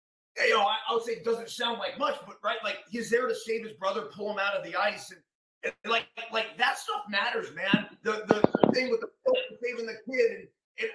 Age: 30-49